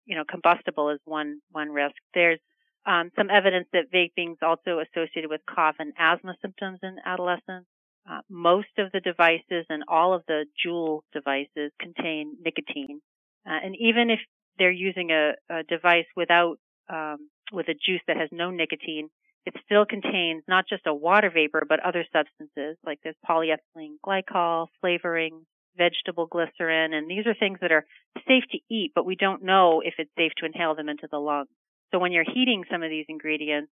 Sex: female